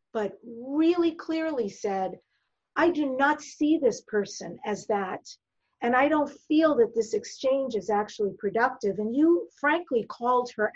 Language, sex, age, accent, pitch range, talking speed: English, female, 50-69, American, 210-275 Hz, 150 wpm